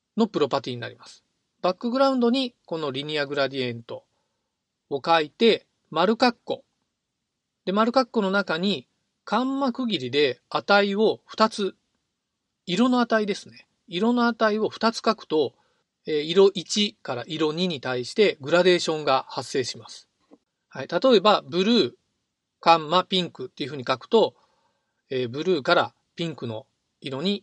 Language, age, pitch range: Japanese, 40-59, 145-220 Hz